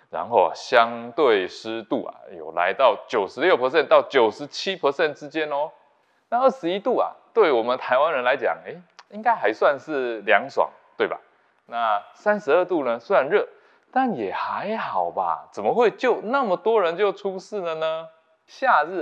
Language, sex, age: Chinese, male, 20-39